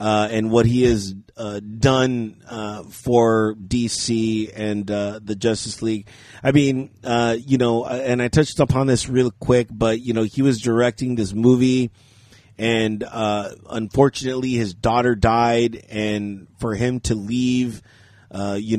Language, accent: English, American